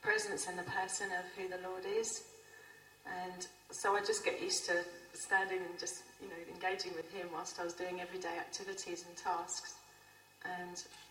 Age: 30-49